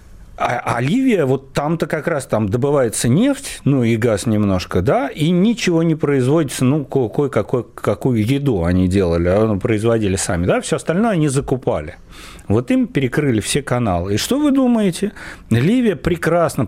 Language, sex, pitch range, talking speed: Russian, male, 110-165 Hz, 160 wpm